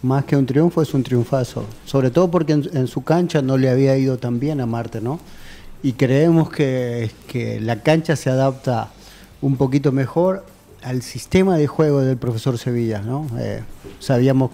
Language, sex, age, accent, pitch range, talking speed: Spanish, male, 40-59, Argentinian, 120-145 Hz, 180 wpm